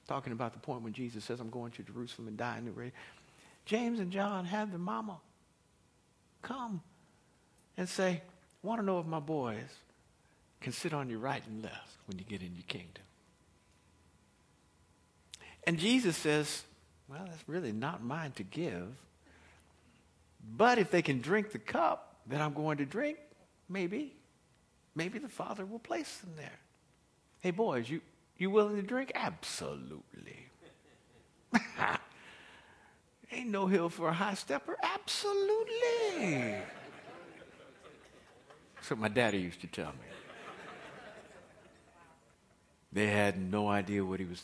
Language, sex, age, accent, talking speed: English, male, 60-79, American, 140 wpm